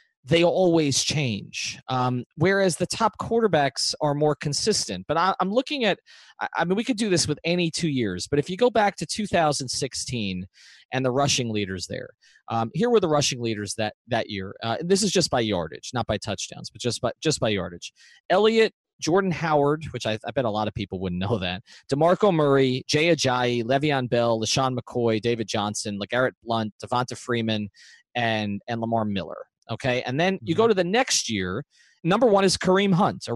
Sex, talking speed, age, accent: male, 200 wpm, 30-49, American